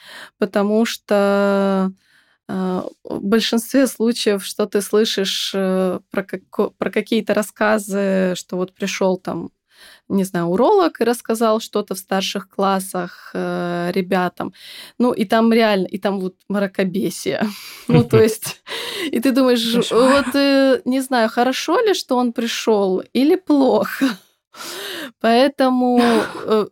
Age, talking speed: 20-39, 125 wpm